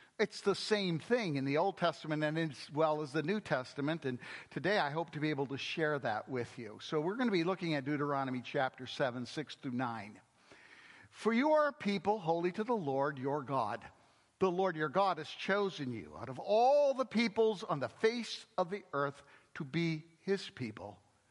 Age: 60-79